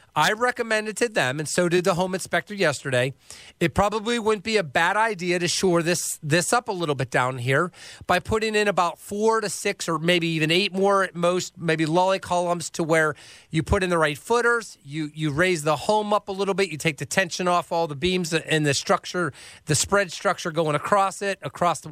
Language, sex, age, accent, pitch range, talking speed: English, male, 40-59, American, 155-195 Hz, 220 wpm